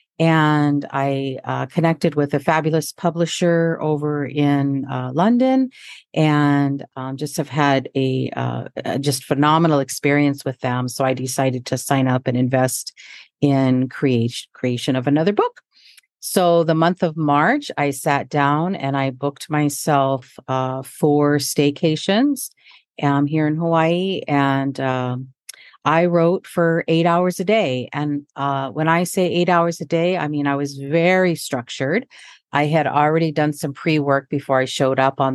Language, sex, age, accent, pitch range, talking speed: English, female, 50-69, American, 135-165 Hz, 155 wpm